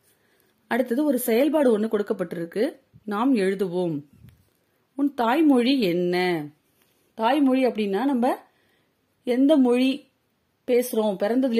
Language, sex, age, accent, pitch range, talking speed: Tamil, female, 30-49, native, 195-255 Hz, 50 wpm